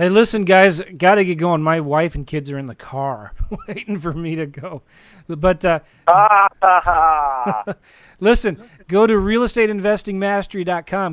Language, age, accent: English, 30-49, American